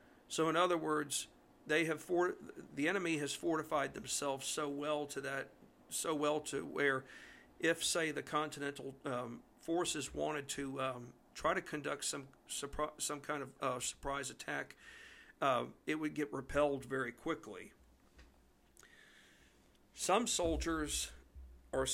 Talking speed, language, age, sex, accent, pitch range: 135 wpm, English, 50-69, male, American, 135-160 Hz